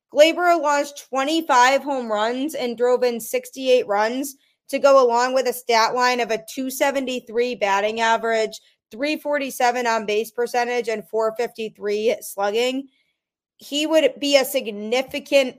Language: English